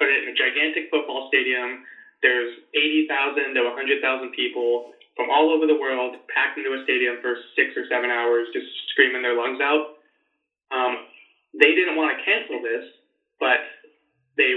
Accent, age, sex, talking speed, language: American, 20-39, male, 165 wpm, English